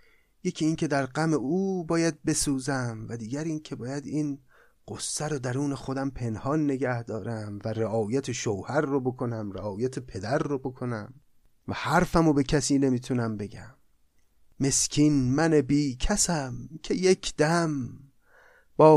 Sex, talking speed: male, 135 wpm